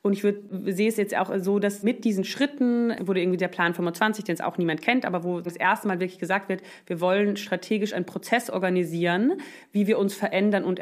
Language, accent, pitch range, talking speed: German, German, 185-215 Hz, 230 wpm